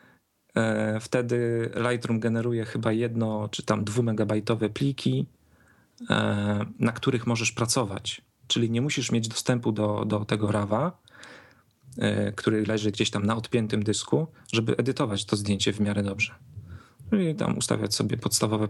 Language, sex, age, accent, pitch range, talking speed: Polish, male, 40-59, native, 105-125 Hz, 130 wpm